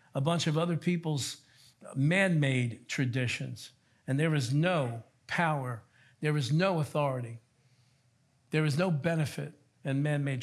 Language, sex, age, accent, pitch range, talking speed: English, male, 60-79, American, 130-170 Hz, 125 wpm